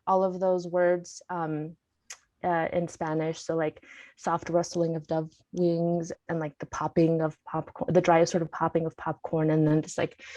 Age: 20-39